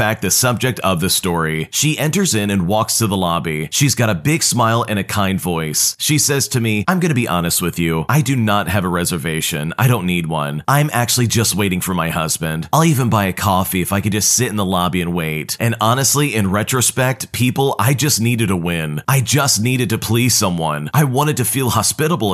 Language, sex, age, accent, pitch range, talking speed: English, male, 30-49, American, 95-130 Hz, 235 wpm